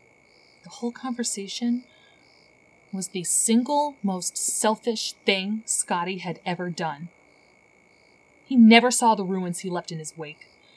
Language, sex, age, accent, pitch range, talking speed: English, female, 30-49, American, 180-225 Hz, 130 wpm